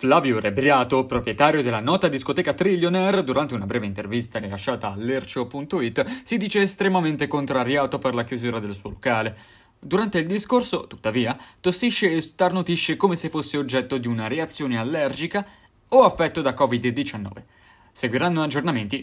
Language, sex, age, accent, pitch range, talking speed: Italian, male, 20-39, native, 105-145 Hz, 140 wpm